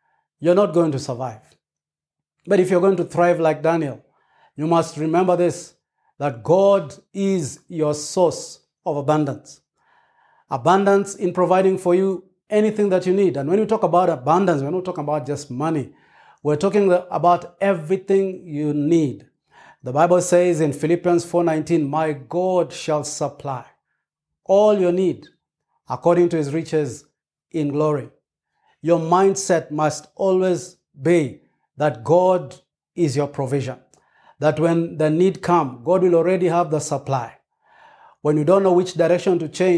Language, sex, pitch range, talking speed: English, male, 150-180 Hz, 150 wpm